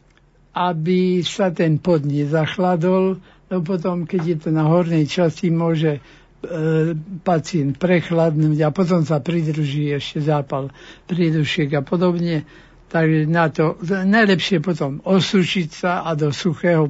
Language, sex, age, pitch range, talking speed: Slovak, male, 60-79, 155-185 Hz, 130 wpm